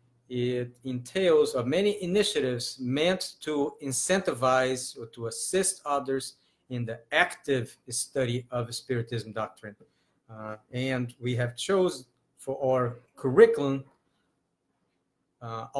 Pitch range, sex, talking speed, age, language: 120-150 Hz, male, 105 wpm, 50-69, English